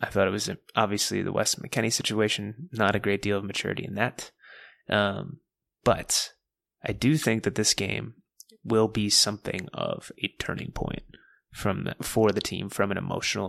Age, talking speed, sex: 20-39, 180 wpm, male